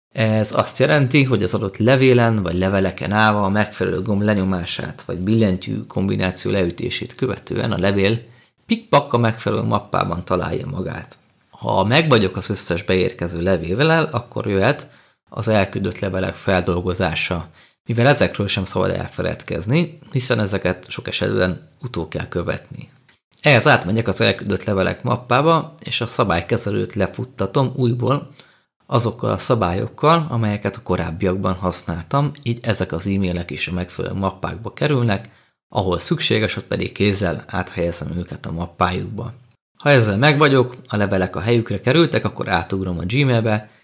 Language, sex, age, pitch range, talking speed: Hungarian, male, 30-49, 90-120 Hz, 135 wpm